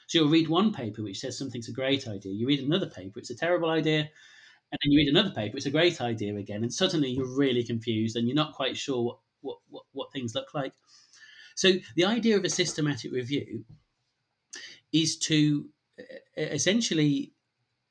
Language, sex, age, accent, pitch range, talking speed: English, male, 40-59, British, 125-155 Hz, 190 wpm